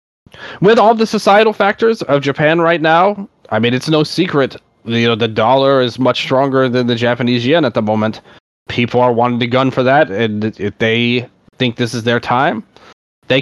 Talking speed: 195 wpm